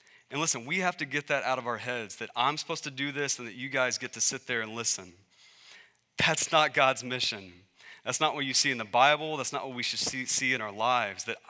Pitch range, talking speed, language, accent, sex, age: 115-140 Hz, 255 wpm, English, American, male, 30-49